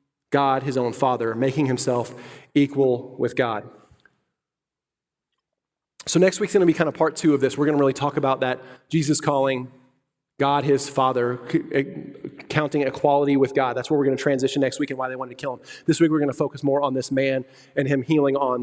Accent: American